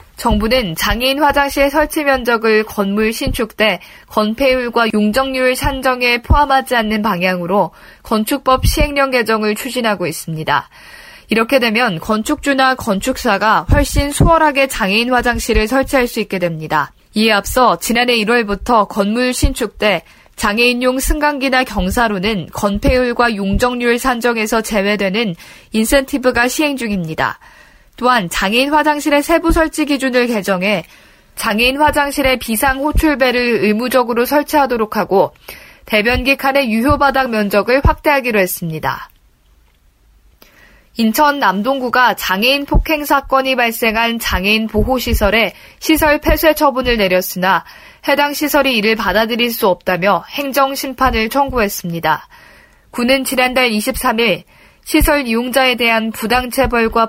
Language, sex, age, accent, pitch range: Korean, female, 20-39, native, 215-270 Hz